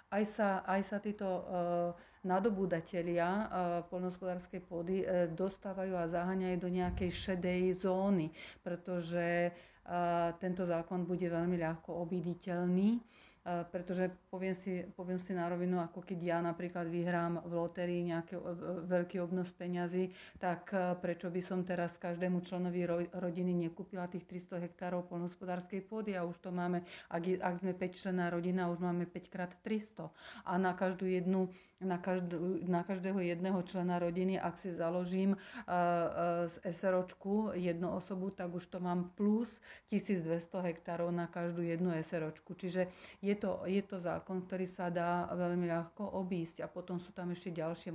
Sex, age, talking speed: female, 40-59, 155 wpm